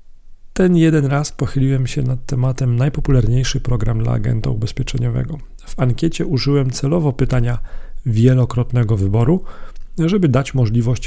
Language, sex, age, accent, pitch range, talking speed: Polish, male, 40-59, native, 120-140 Hz, 120 wpm